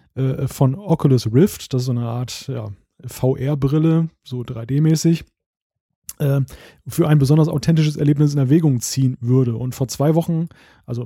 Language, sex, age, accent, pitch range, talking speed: German, male, 30-49, German, 130-155 Hz, 135 wpm